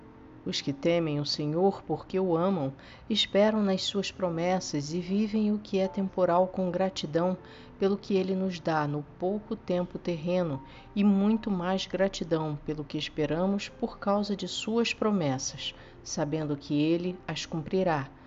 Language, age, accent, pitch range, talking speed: Portuguese, 50-69, Brazilian, 150-195 Hz, 150 wpm